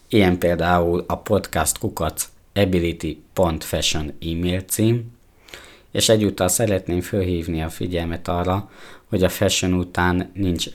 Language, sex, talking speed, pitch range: Hungarian, male, 105 wpm, 80-95 Hz